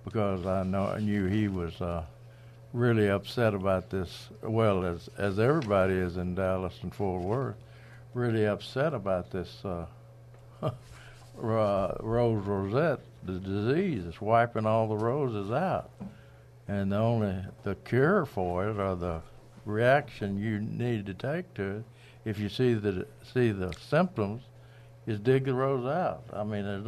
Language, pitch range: English, 100-125 Hz